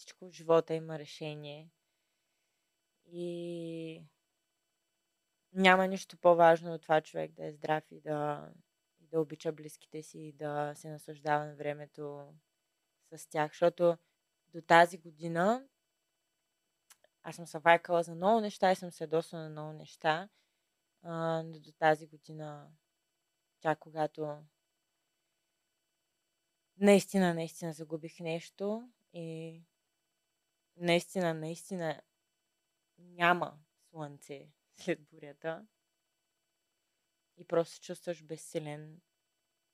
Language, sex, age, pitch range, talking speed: Bulgarian, female, 20-39, 155-165 Hz, 100 wpm